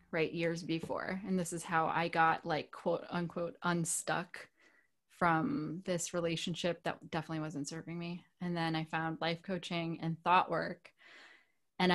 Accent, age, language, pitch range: American, 20-39, English, 170-195 Hz